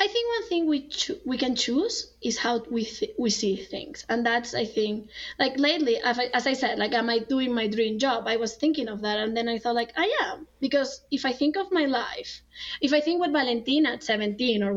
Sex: female